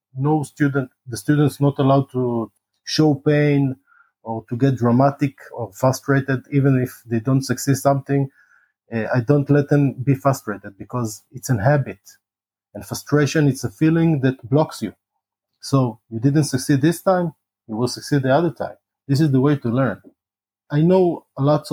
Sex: male